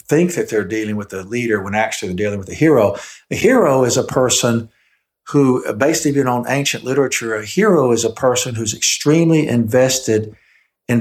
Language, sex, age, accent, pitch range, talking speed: English, male, 60-79, American, 110-130 Hz, 190 wpm